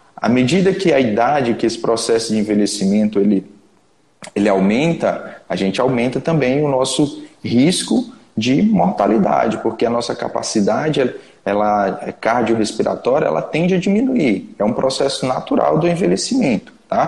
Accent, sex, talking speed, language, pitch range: Brazilian, male, 130 wpm, Portuguese, 115-165 Hz